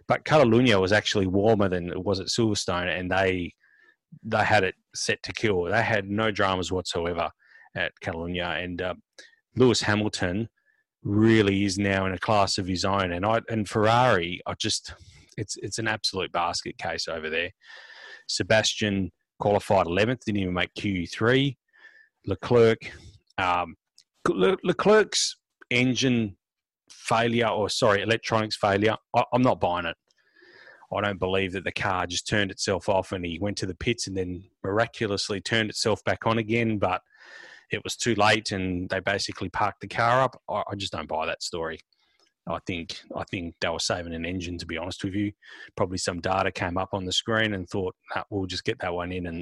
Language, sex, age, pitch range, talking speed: English, male, 30-49, 90-115 Hz, 180 wpm